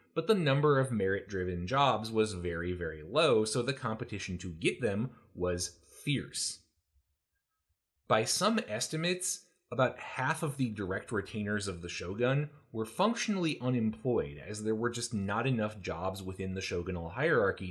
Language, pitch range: English, 90-125 Hz